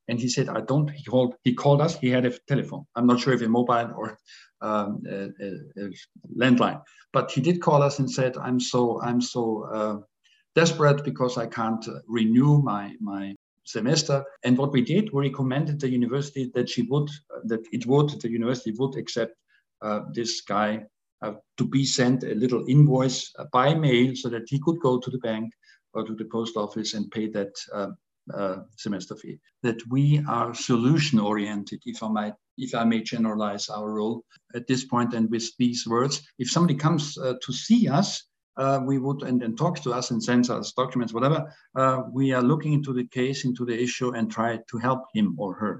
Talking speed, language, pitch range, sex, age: 200 wpm, English, 115-140 Hz, male, 50-69